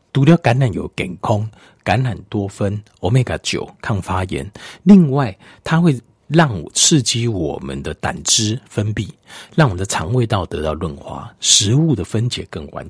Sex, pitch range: male, 95-145 Hz